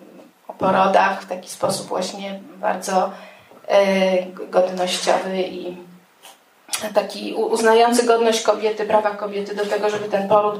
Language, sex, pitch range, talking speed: Polish, female, 190-215 Hz, 100 wpm